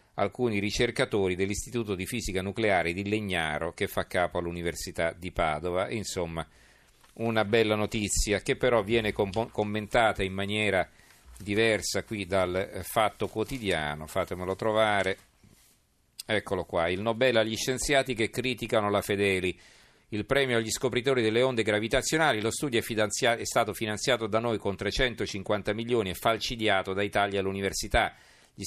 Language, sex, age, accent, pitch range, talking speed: Italian, male, 40-59, native, 95-115 Hz, 135 wpm